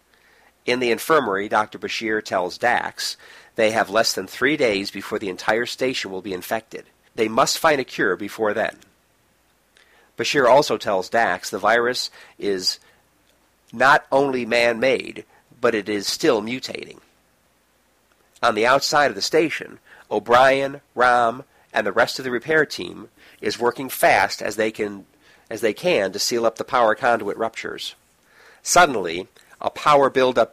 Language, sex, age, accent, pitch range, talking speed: English, male, 50-69, American, 110-135 Hz, 145 wpm